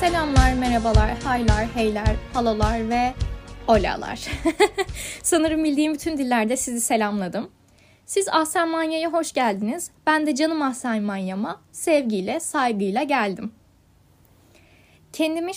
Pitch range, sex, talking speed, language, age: 225-310 Hz, female, 105 wpm, Turkish, 10-29